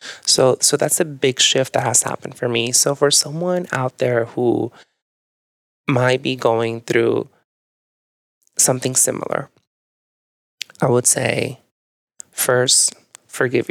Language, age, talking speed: English, 20-39, 125 wpm